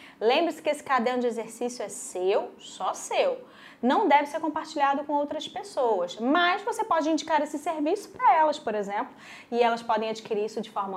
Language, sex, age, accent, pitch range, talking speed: Portuguese, female, 20-39, Brazilian, 230-290 Hz, 185 wpm